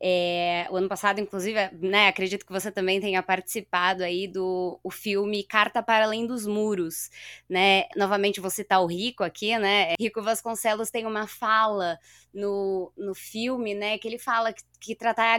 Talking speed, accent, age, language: 170 wpm, Brazilian, 20-39, Portuguese